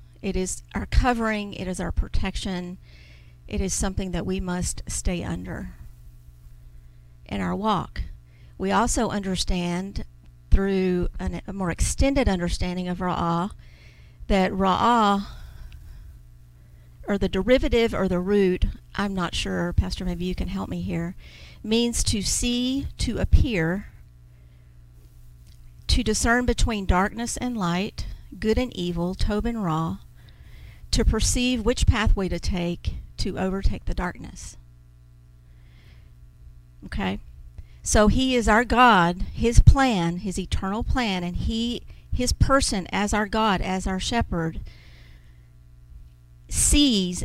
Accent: American